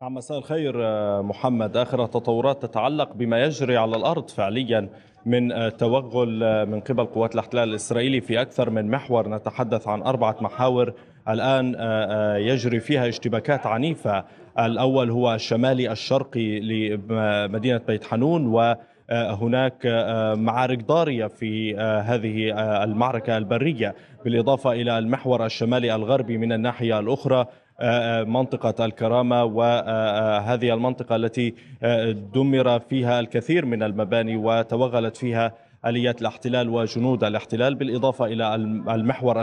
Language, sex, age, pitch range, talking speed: Arabic, male, 20-39, 110-125 Hz, 110 wpm